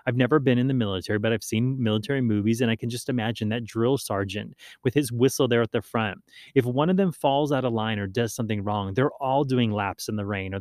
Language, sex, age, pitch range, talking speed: English, male, 30-49, 110-135 Hz, 260 wpm